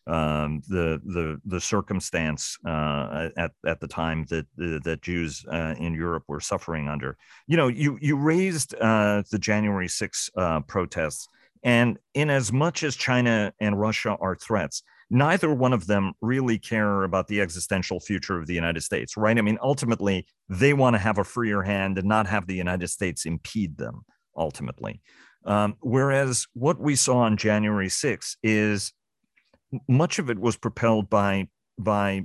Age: 50-69